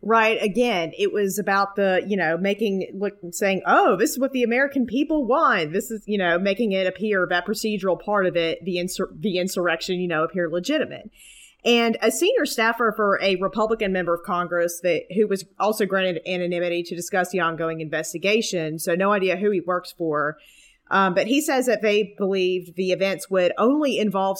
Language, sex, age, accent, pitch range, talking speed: English, female, 30-49, American, 180-230 Hz, 190 wpm